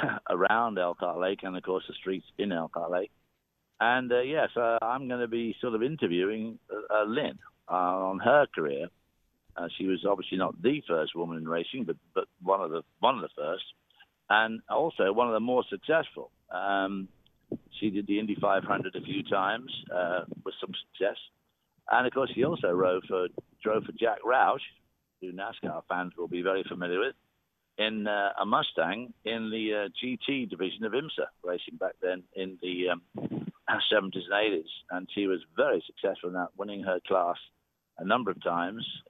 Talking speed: 185 wpm